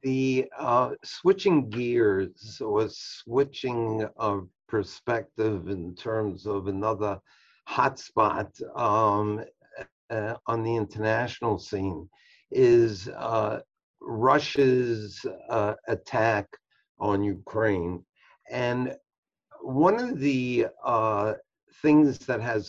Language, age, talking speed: English, 50-69, 95 wpm